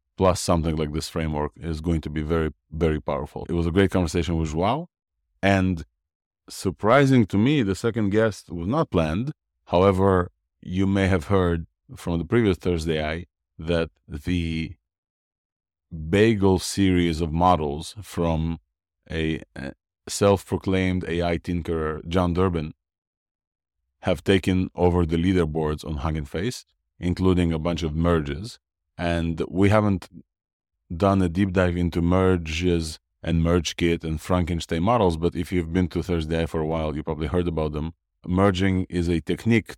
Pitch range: 80-90 Hz